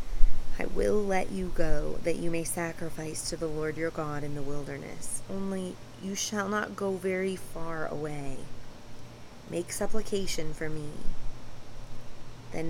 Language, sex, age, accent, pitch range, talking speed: English, female, 30-49, American, 125-175 Hz, 140 wpm